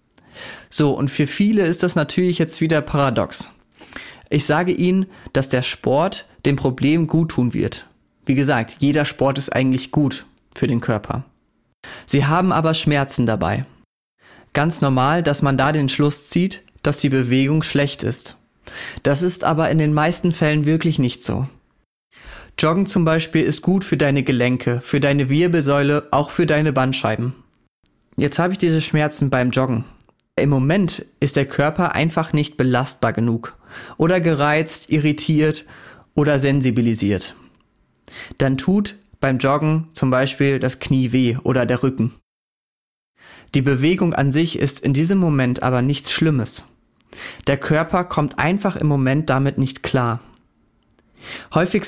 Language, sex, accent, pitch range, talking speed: German, male, German, 130-160 Hz, 145 wpm